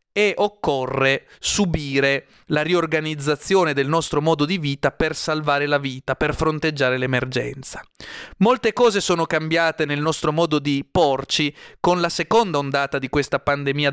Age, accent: 30-49, native